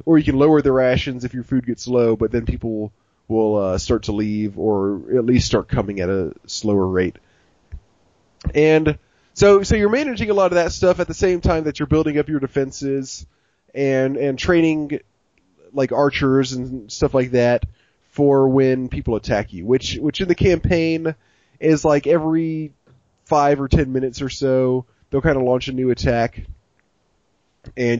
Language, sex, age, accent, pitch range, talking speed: English, male, 30-49, American, 120-150 Hz, 180 wpm